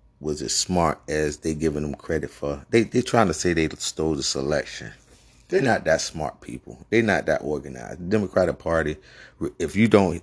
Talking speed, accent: 195 wpm, American